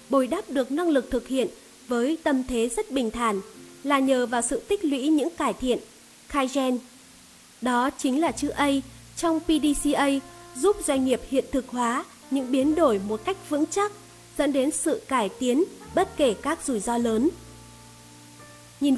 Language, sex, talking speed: Vietnamese, female, 175 wpm